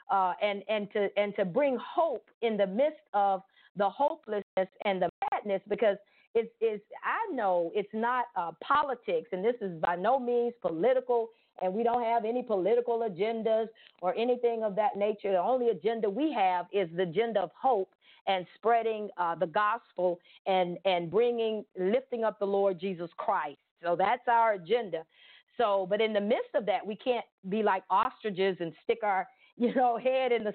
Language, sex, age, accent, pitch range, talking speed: English, female, 50-69, American, 195-245 Hz, 185 wpm